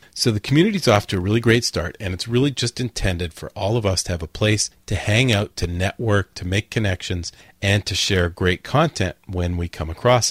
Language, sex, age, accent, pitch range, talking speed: English, male, 40-59, American, 90-120 Hz, 235 wpm